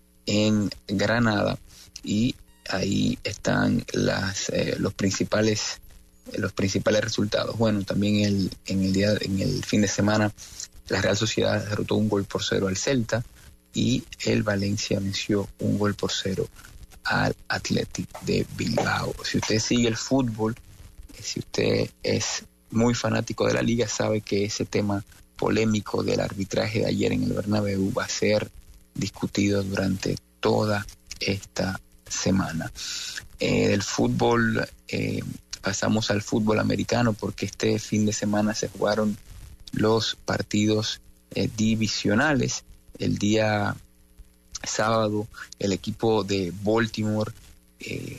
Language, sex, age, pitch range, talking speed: English, male, 30-49, 95-110 Hz, 130 wpm